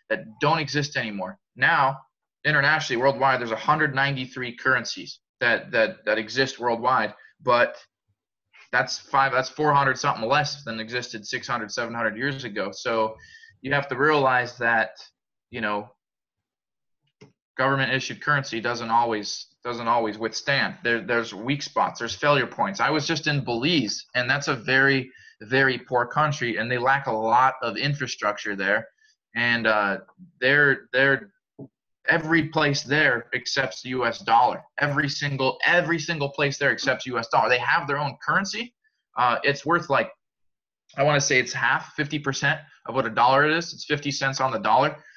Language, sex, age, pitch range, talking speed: English, male, 20-39, 120-150 Hz, 160 wpm